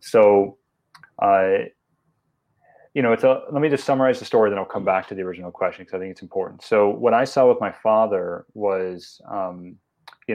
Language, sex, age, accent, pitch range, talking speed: English, male, 30-49, American, 95-115 Hz, 205 wpm